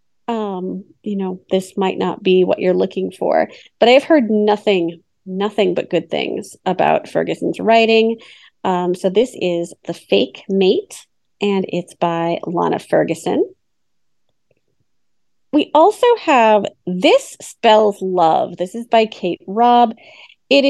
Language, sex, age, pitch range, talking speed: English, female, 30-49, 185-240 Hz, 135 wpm